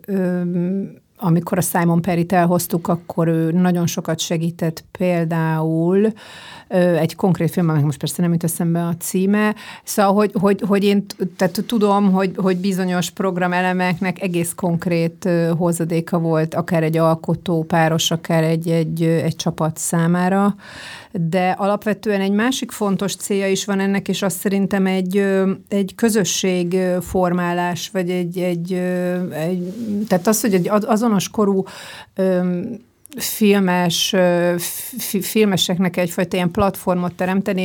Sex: female